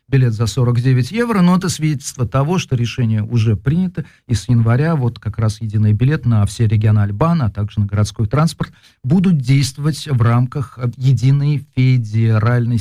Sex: male